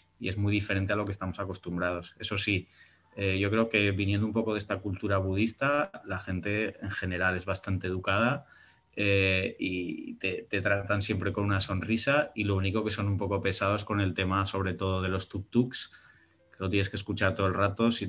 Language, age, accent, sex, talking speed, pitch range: Spanish, 20-39, Spanish, male, 210 wpm, 95-105 Hz